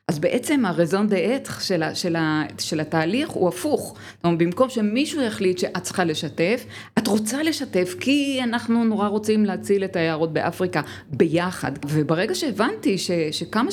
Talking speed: 140 wpm